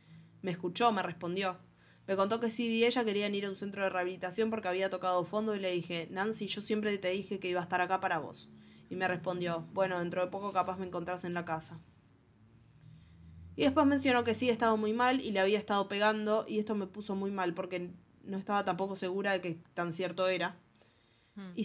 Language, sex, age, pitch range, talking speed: Spanish, female, 20-39, 175-215 Hz, 220 wpm